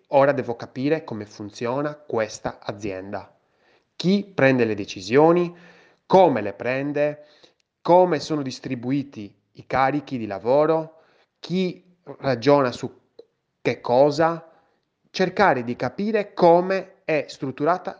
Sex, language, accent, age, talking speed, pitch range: male, Italian, native, 20-39, 105 wpm, 125-175 Hz